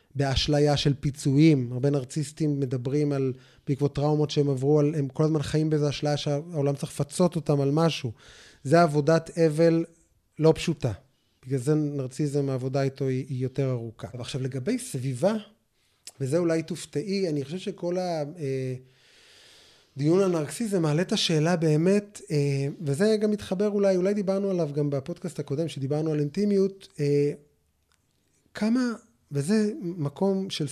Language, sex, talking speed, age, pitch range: Hebrew, male, 140 wpm, 20-39, 135-160 Hz